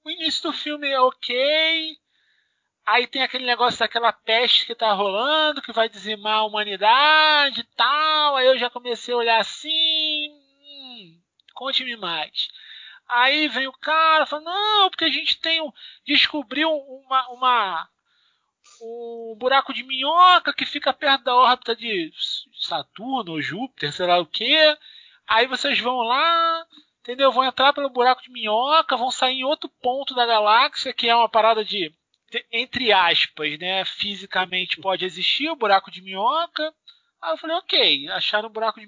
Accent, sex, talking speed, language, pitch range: Brazilian, male, 165 wpm, Portuguese, 230-310 Hz